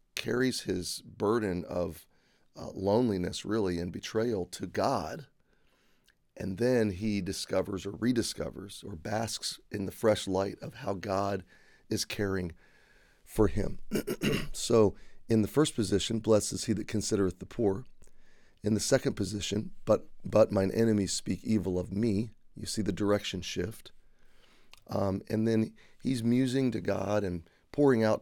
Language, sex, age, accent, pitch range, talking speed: English, male, 30-49, American, 95-110 Hz, 145 wpm